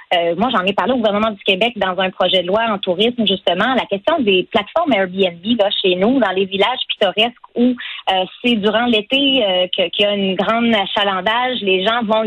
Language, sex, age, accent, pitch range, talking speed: French, female, 30-49, Canadian, 195-245 Hz, 220 wpm